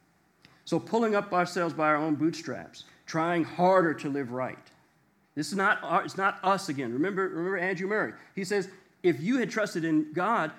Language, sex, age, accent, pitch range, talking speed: English, male, 40-59, American, 140-175 Hz, 185 wpm